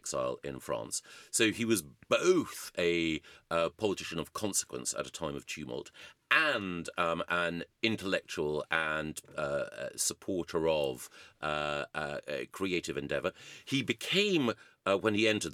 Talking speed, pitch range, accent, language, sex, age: 135 wpm, 85-125 Hz, British, English, male, 40-59